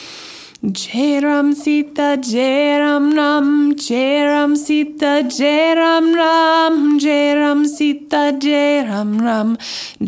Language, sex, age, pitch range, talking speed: English, female, 20-39, 255-295 Hz, 210 wpm